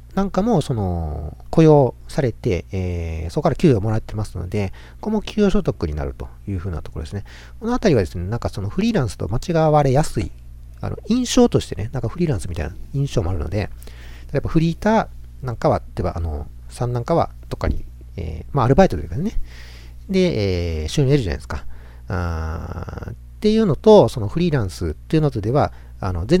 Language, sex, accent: Japanese, male, native